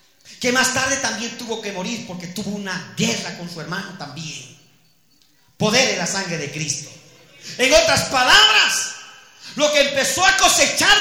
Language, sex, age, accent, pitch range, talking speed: Spanish, male, 40-59, Mexican, 180-275 Hz, 160 wpm